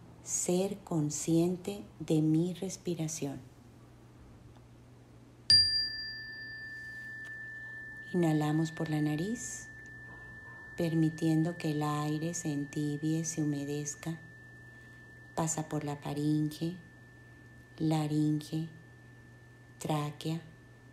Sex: female